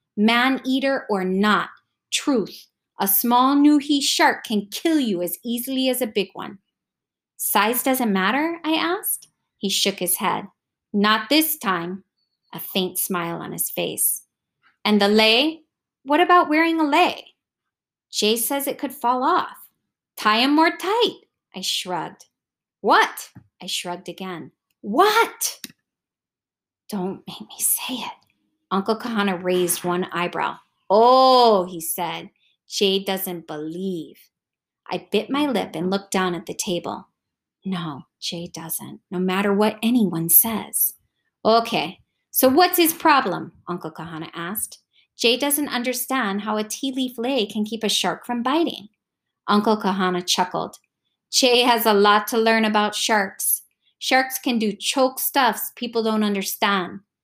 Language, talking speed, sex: English, 140 wpm, female